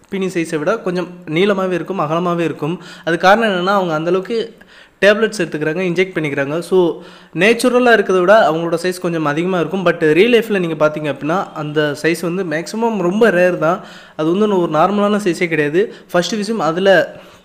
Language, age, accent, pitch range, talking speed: Tamil, 20-39, native, 160-205 Hz, 170 wpm